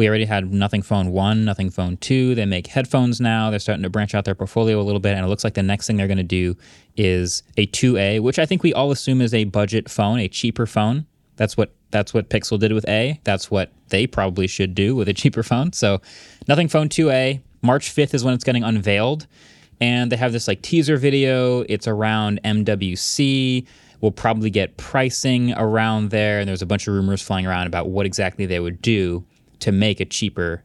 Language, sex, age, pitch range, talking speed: English, male, 20-39, 100-125 Hz, 220 wpm